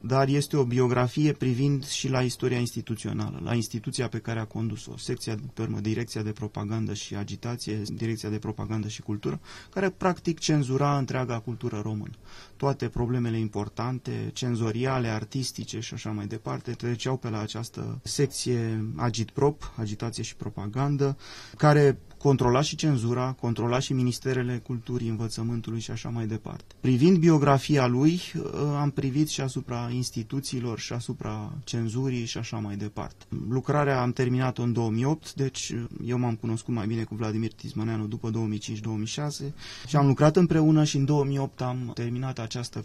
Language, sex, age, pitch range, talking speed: Romanian, male, 30-49, 110-135 Hz, 150 wpm